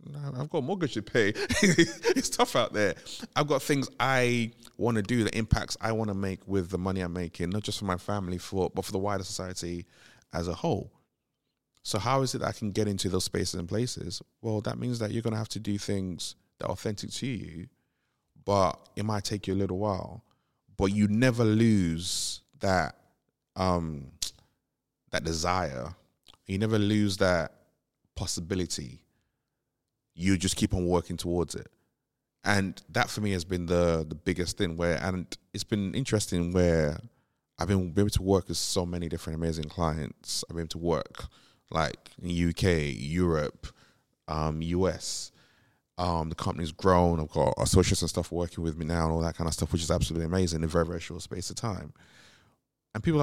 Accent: British